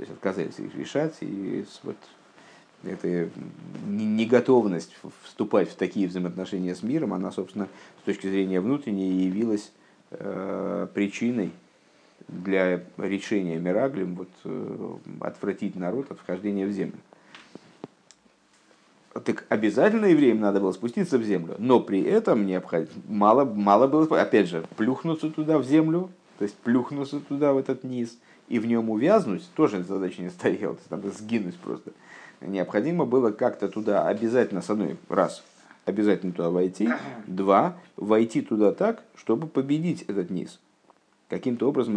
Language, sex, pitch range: Russian, male, 95-135 Hz